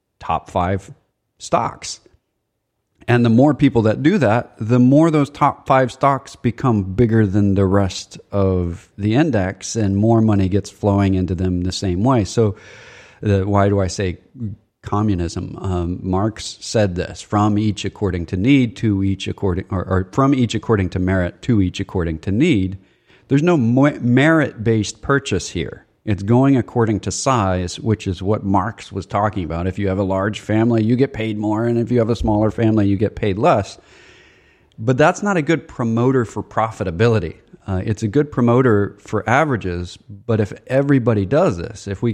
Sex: male